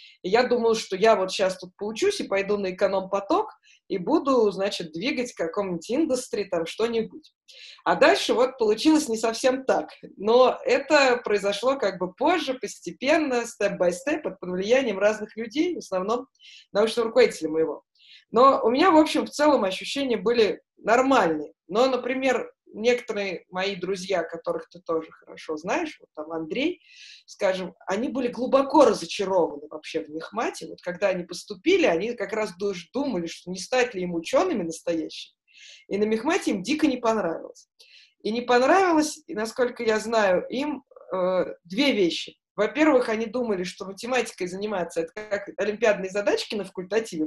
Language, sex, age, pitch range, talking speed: Russian, female, 20-39, 190-270 Hz, 155 wpm